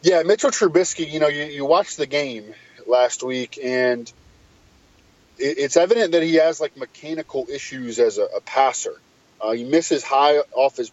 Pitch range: 125-160 Hz